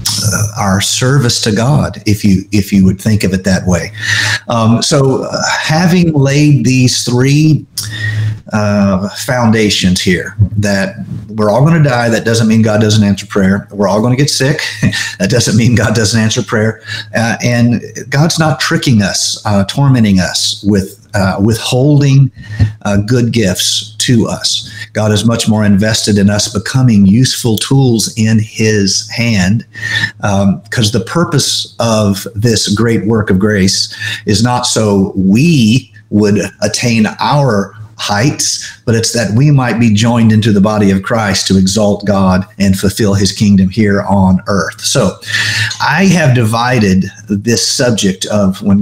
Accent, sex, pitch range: American, male, 100-120 Hz